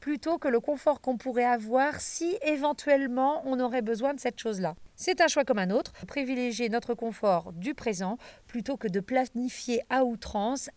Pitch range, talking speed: 205-285 Hz, 185 wpm